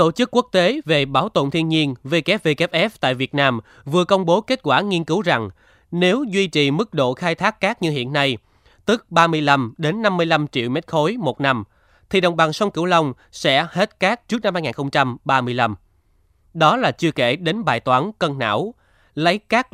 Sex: male